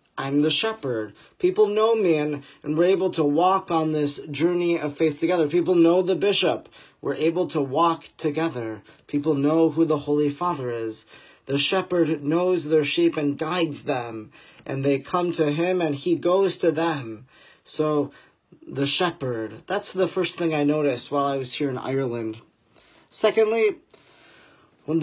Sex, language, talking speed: male, English, 165 wpm